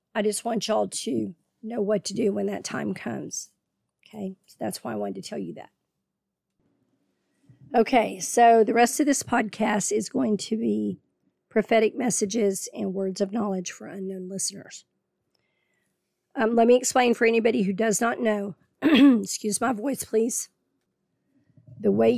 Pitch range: 200-235 Hz